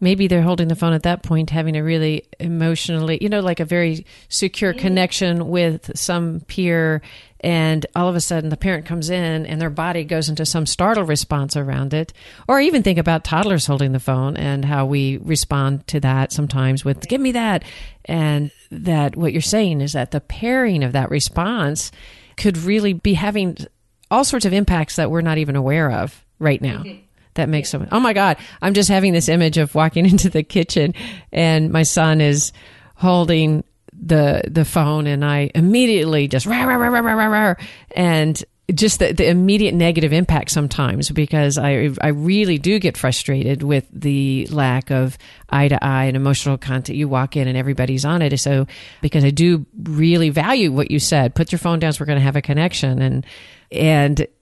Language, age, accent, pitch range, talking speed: English, 40-59, American, 140-175 Hz, 195 wpm